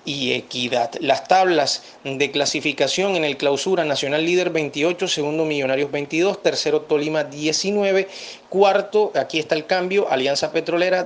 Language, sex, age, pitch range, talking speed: Spanish, male, 30-49, 150-190 Hz, 135 wpm